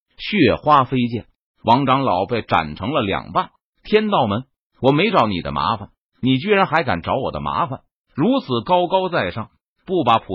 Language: Chinese